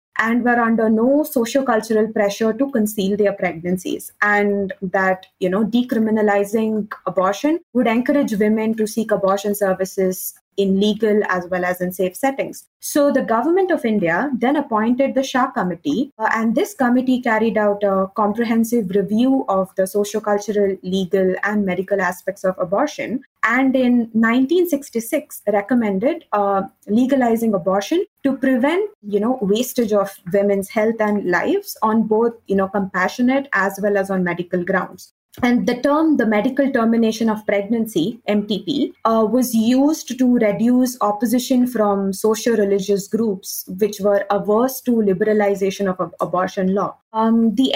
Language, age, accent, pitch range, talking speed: English, 20-39, Indian, 200-255 Hz, 145 wpm